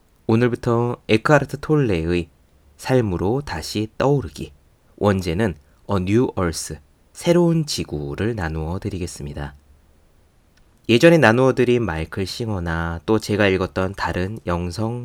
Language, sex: Korean, male